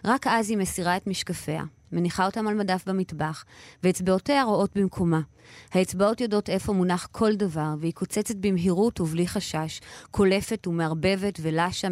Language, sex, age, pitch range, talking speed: Hebrew, female, 30-49, 160-195 Hz, 140 wpm